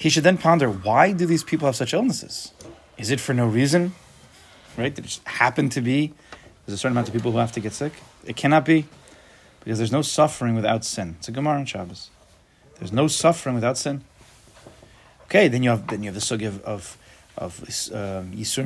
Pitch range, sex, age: 105-145 Hz, male, 30-49